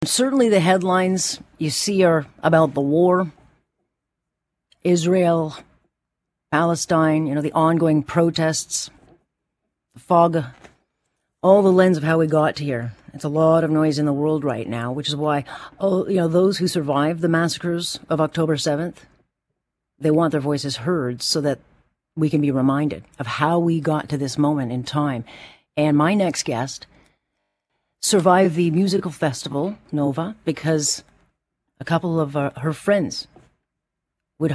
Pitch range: 140-170 Hz